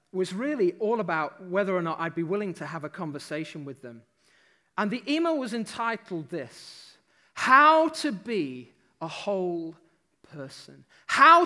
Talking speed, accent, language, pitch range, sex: 150 wpm, British, English, 175-265 Hz, male